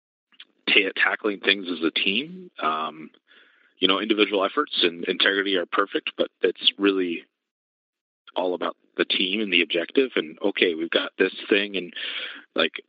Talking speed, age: 155 wpm, 30-49